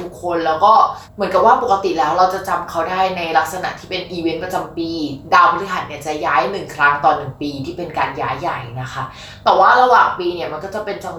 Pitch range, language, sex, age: 165-220 Hz, Thai, female, 20-39